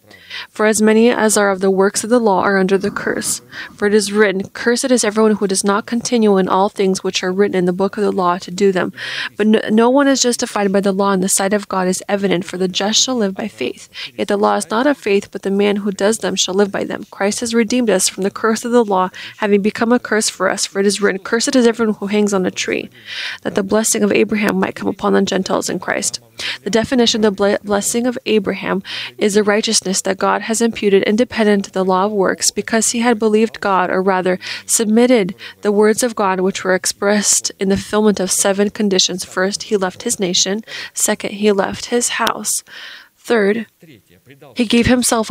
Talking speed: 230 wpm